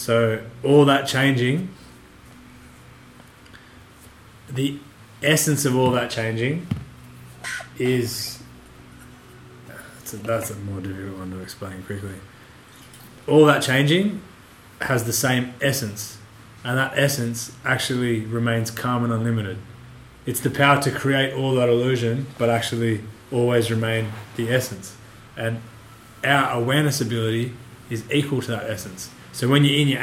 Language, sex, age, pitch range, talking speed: English, male, 20-39, 110-130 Hz, 125 wpm